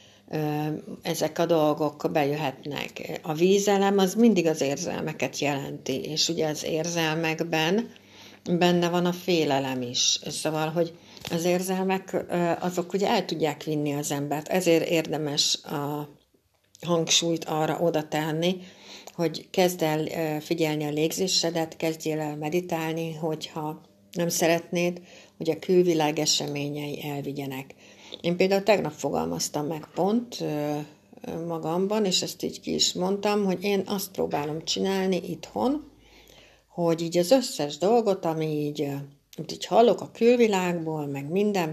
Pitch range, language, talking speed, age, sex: 150-175 Hz, Hungarian, 125 wpm, 60-79, female